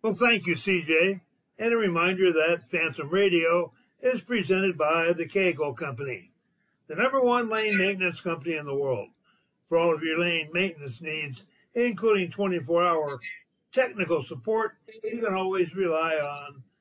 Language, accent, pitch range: English, American, 155-195 Hz